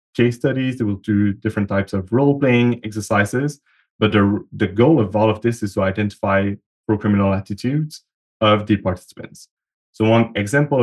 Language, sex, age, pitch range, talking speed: English, male, 20-39, 100-110 Hz, 160 wpm